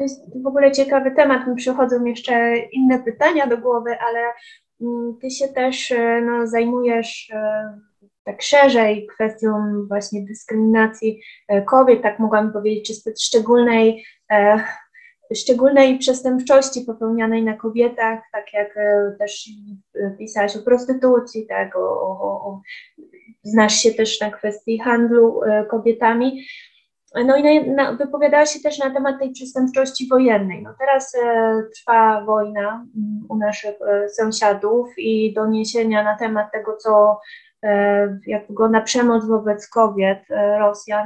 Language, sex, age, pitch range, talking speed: Polish, female, 20-39, 215-255 Hz, 110 wpm